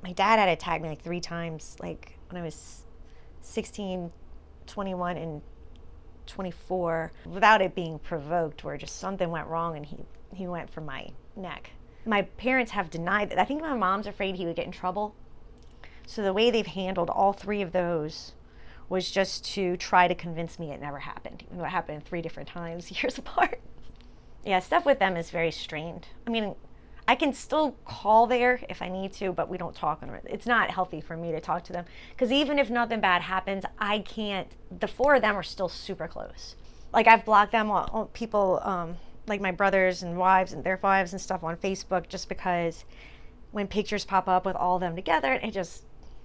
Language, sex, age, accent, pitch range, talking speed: English, female, 30-49, American, 165-205 Hz, 200 wpm